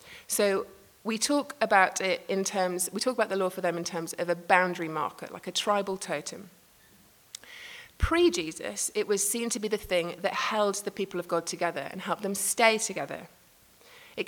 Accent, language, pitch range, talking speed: British, English, 180-225 Hz, 190 wpm